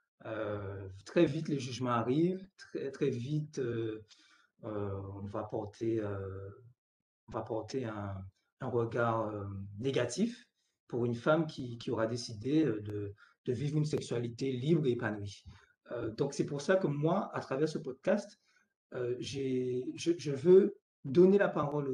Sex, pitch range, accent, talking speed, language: male, 125-175 Hz, French, 155 wpm, French